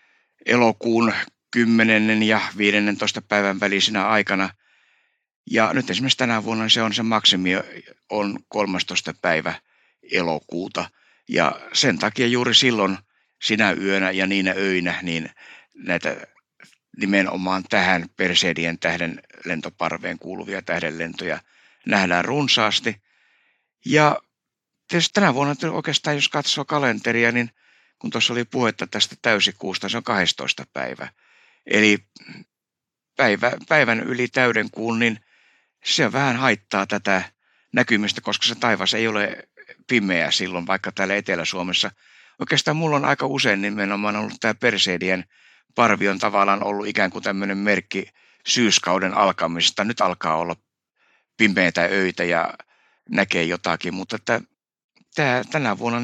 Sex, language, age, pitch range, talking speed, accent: male, Finnish, 60-79, 95-120 Hz, 120 wpm, native